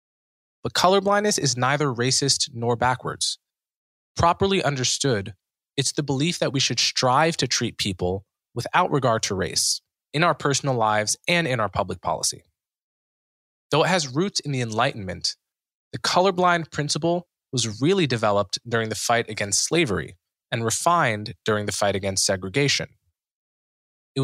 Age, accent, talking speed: 20-39, American, 145 wpm